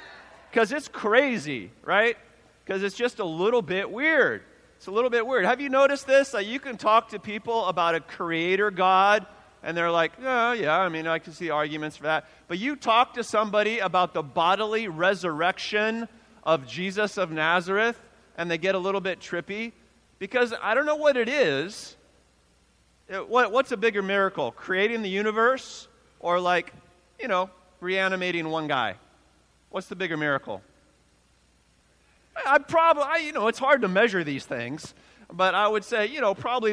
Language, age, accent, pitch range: English, 40-59, American, 160-215 Hz